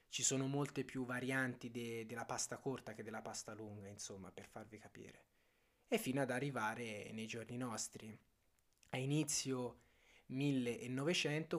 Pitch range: 115-140 Hz